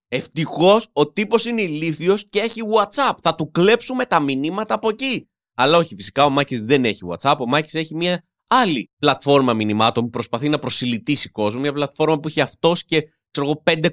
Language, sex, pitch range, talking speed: Greek, male, 130-170 Hz, 185 wpm